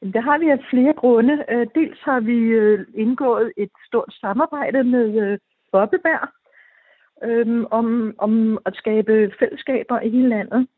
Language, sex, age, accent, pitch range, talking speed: Danish, female, 60-79, native, 200-240 Hz, 130 wpm